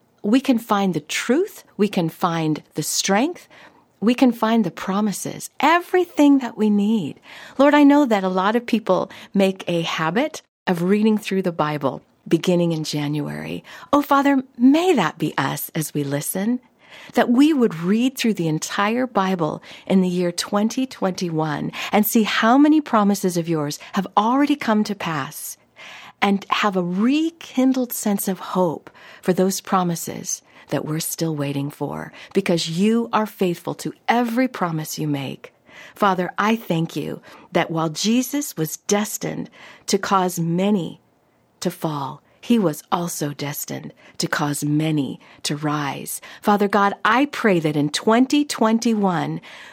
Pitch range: 165-235 Hz